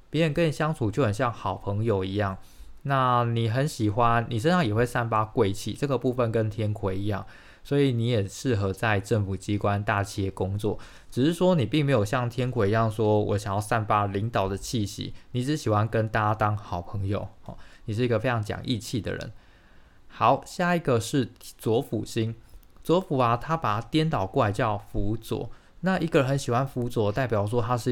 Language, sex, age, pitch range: Chinese, male, 20-39, 105-130 Hz